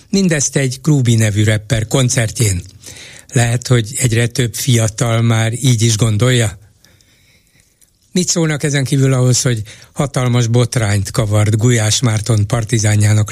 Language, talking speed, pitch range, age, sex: Hungarian, 120 wpm, 115-140 Hz, 60-79, male